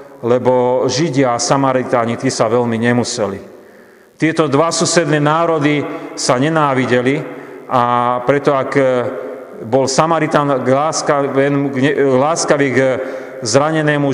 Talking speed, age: 95 wpm, 40-59